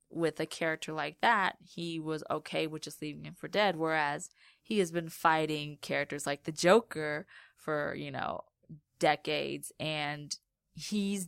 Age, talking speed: 20-39, 155 wpm